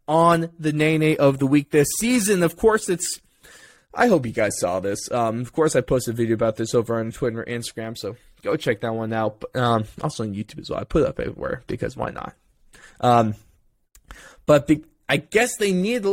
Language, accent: English, American